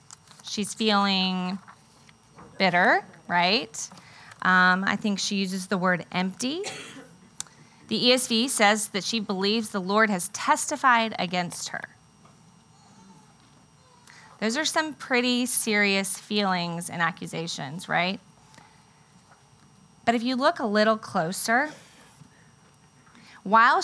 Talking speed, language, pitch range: 105 wpm, English, 180-220 Hz